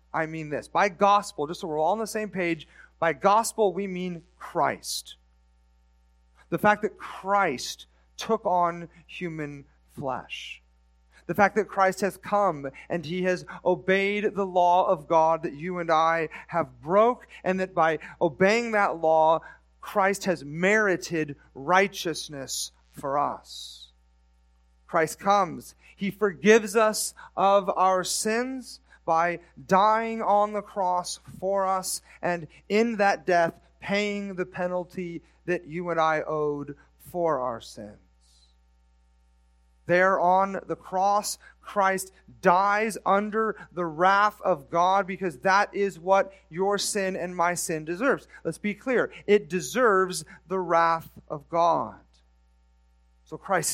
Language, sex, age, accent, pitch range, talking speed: English, male, 40-59, American, 155-200 Hz, 135 wpm